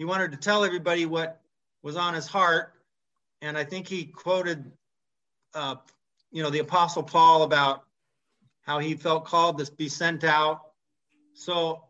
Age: 30-49